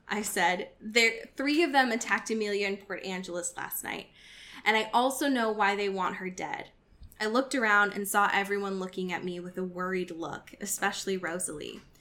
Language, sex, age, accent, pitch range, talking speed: English, female, 10-29, American, 190-250 Hz, 185 wpm